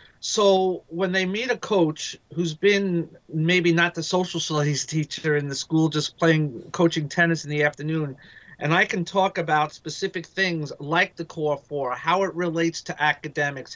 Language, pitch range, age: English, 150-175 Hz, 40-59